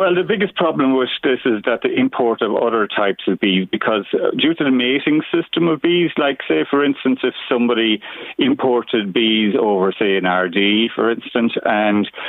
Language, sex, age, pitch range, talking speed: English, male, 40-59, 110-130 Hz, 190 wpm